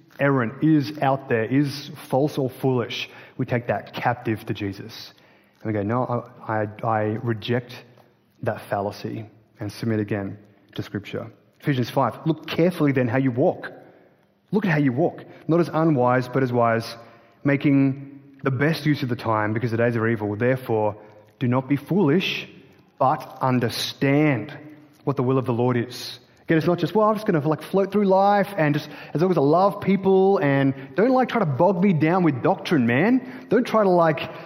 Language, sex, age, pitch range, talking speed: English, male, 30-49, 120-160 Hz, 190 wpm